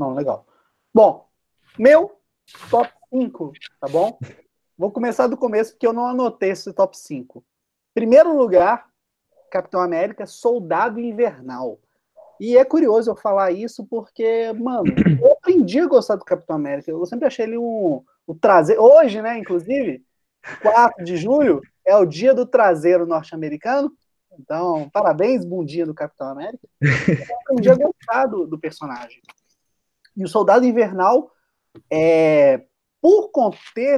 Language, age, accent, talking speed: Portuguese, 20-39, Brazilian, 135 wpm